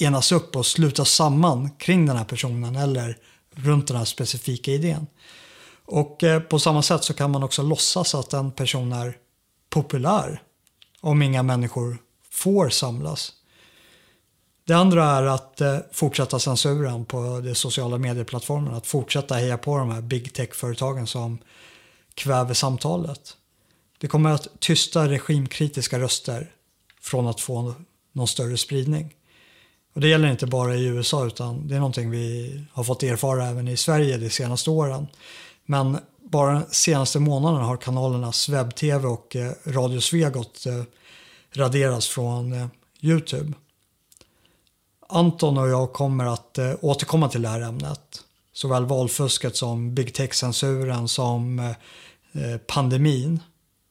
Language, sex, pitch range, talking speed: Swedish, male, 125-150 Hz, 130 wpm